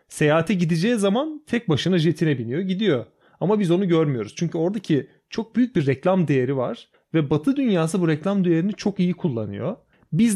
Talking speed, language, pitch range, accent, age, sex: 175 wpm, Turkish, 150-195 Hz, native, 30-49, male